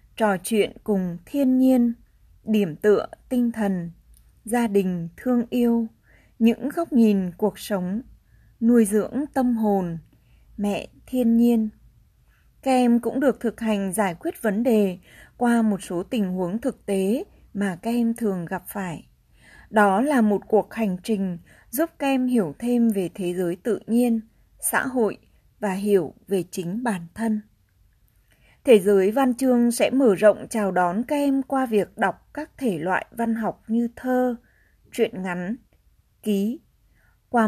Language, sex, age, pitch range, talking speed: Vietnamese, female, 20-39, 195-245 Hz, 155 wpm